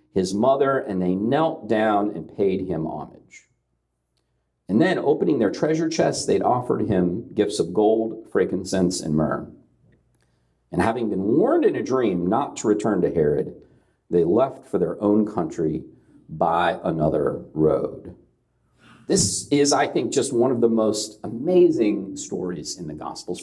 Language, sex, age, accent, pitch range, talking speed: English, male, 50-69, American, 100-160 Hz, 155 wpm